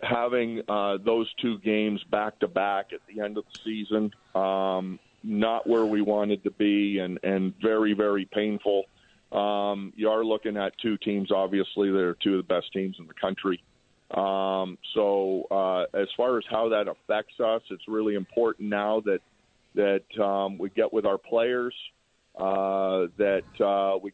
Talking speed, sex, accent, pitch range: 175 wpm, male, American, 100-110 Hz